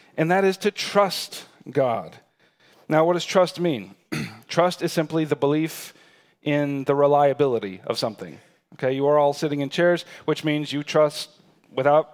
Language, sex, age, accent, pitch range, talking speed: English, male, 40-59, American, 140-180 Hz, 165 wpm